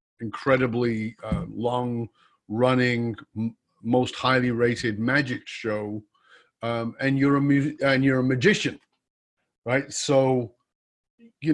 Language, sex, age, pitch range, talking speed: English, male, 40-59, 125-160 Hz, 90 wpm